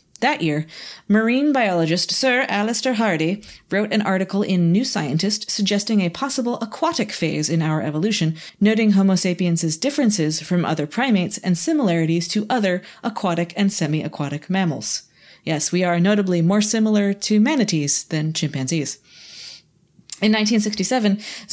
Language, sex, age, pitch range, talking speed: English, female, 30-49, 160-210 Hz, 135 wpm